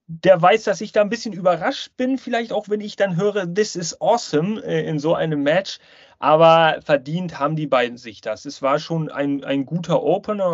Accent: German